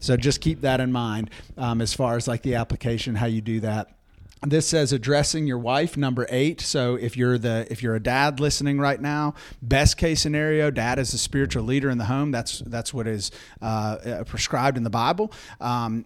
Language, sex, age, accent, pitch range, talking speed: English, male, 40-59, American, 110-130 Hz, 210 wpm